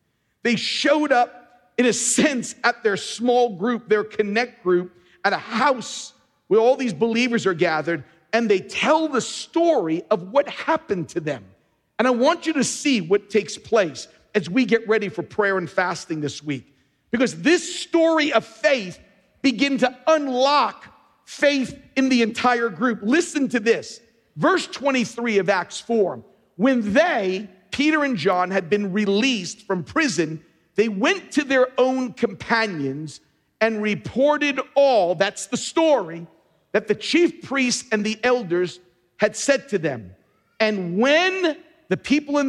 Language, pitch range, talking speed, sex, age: English, 185-260 Hz, 155 wpm, male, 50-69